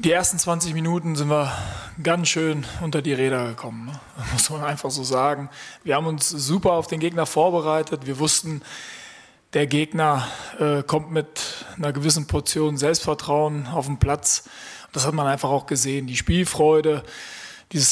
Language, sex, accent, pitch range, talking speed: German, male, German, 140-165 Hz, 165 wpm